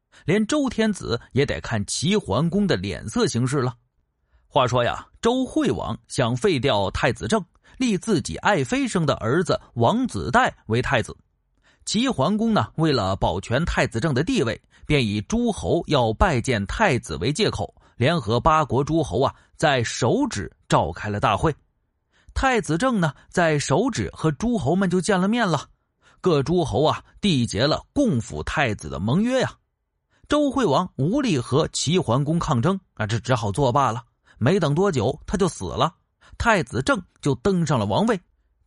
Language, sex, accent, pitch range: Chinese, male, native, 115-195 Hz